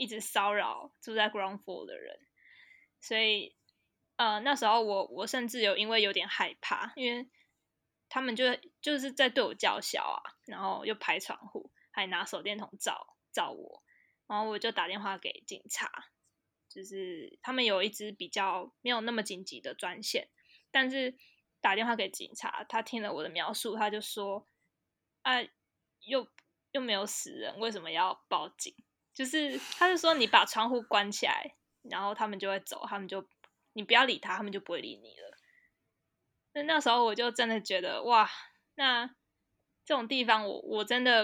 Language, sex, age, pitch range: Chinese, female, 10-29, 205-260 Hz